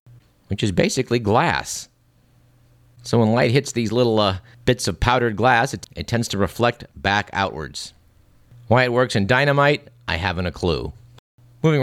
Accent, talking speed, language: American, 160 wpm, English